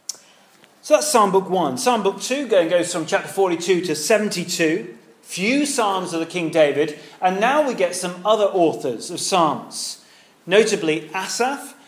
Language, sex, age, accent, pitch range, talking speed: English, male, 40-59, British, 160-210 Hz, 155 wpm